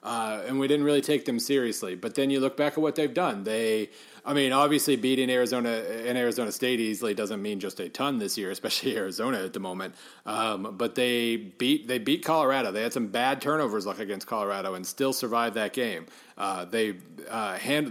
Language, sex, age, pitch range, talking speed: English, male, 40-59, 115-145 Hz, 210 wpm